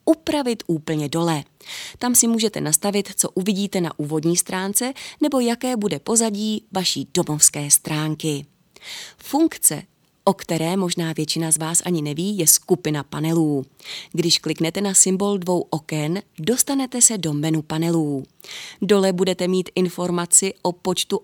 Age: 30-49